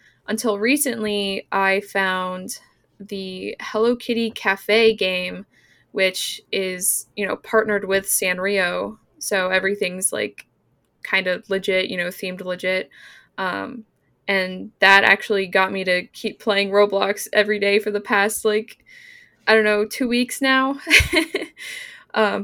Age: 10-29